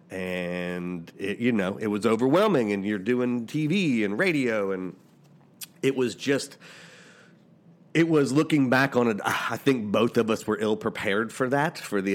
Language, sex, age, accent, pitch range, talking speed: English, male, 40-59, American, 95-135 Hz, 165 wpm